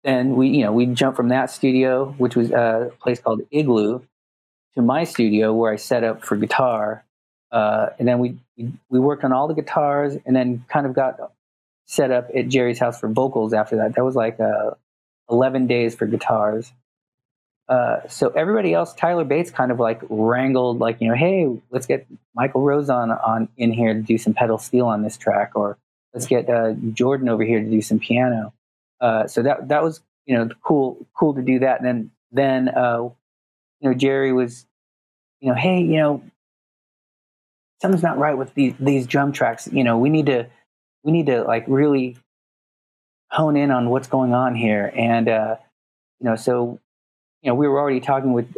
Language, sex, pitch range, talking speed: English, male, 110-130 Hz, 195 wpm